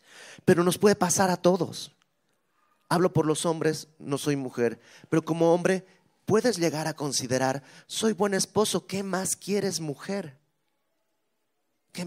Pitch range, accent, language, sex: 140-185 Hz, Mexican, Spanish, male